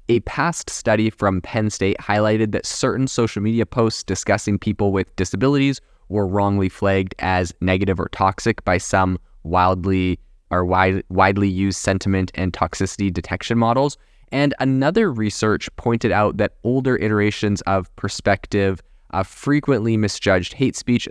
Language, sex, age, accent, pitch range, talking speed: English, male, 20-39, American, 95-110 Hz, 140 wpm